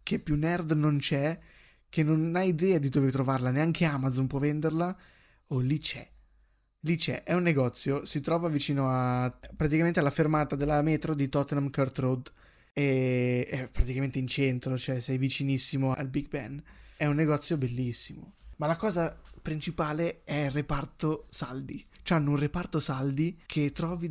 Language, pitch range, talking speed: Italian, 135-160 Hz, 170 wpm